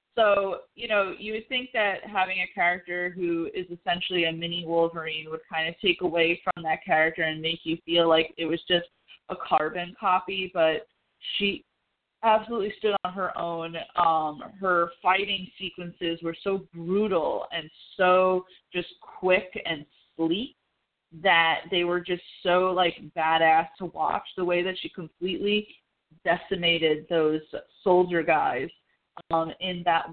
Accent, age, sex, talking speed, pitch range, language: American, 20-39, female, 150 wpm, 165-185 Hz, English